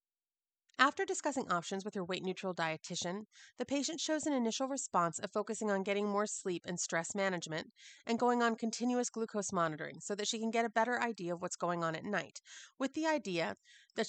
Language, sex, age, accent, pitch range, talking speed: English, female, 30-49, American, 185-230 Hz, 195 wpm